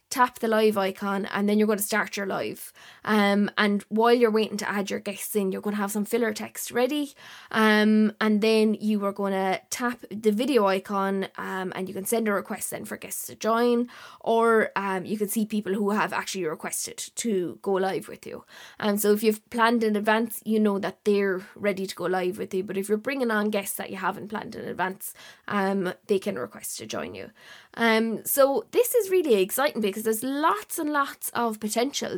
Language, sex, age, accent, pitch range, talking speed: English, female, 20-39, Irish, 200-235 Hz, 220 wpm